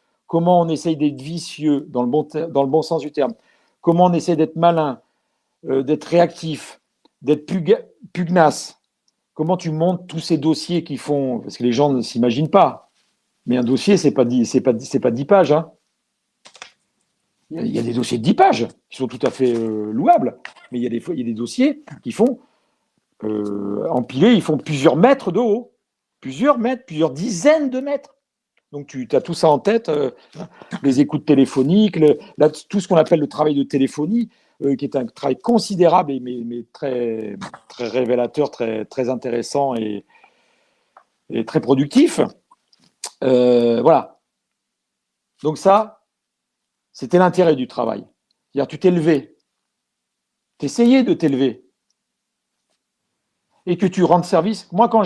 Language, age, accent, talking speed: French, 50-69, French, 160 wpm